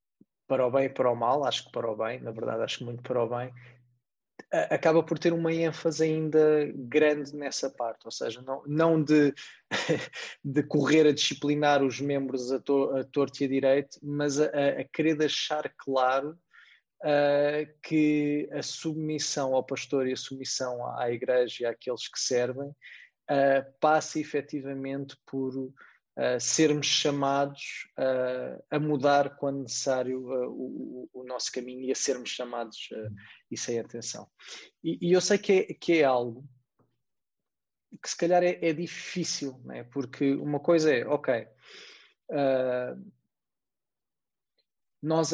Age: 20-39